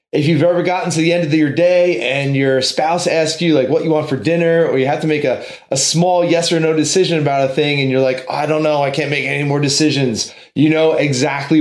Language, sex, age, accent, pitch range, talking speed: English, male, 30-49, American, 135-165 Hz, 265 wpm